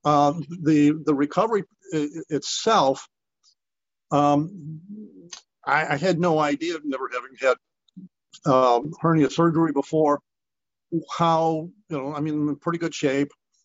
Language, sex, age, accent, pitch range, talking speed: English, male, 50-69, American, 140-165 Hz, 115 wpm